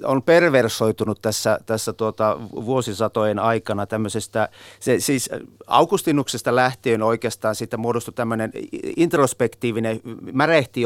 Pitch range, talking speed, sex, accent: 110-145 Hz, 100 wpm, male, native